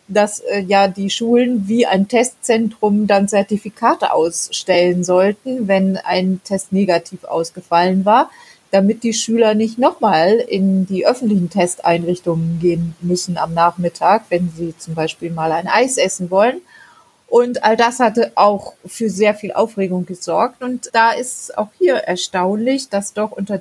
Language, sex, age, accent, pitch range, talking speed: German, female, 30-49, German, 180-230 Hz, 150 wpm